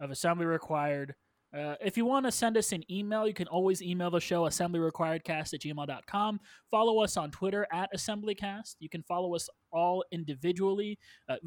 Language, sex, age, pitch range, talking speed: English, male, 20-39, 145-175 Hz, 180 wpm